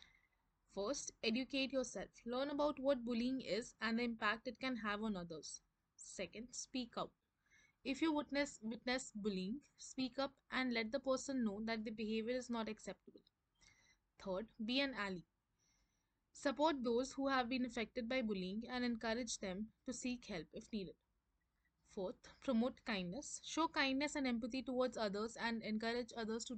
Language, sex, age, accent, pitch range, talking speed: English, female, 20-39, Indian, 220-260 Hz, 160 wpm